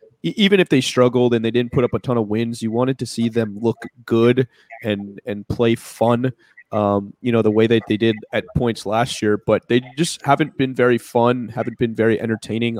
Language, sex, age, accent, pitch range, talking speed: English, male, 20-39, American, 110-125 Hz, 220 wpm